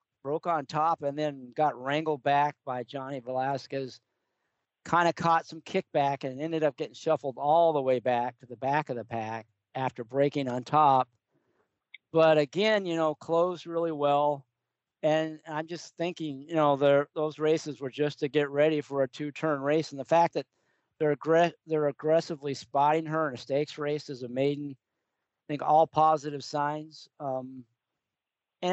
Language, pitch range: English, 130-155 Hz